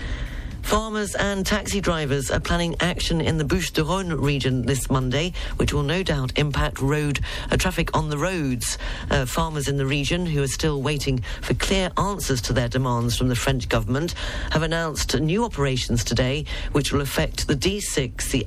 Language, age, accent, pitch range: English, 50-69, British, 125-155 Hz